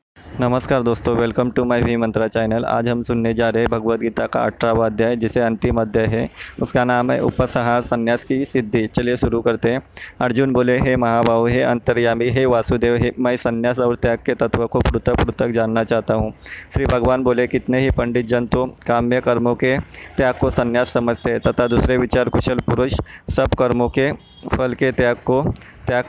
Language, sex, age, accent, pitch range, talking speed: Hindi, male, 20-39, native, 120-125 Hz, 190 wpm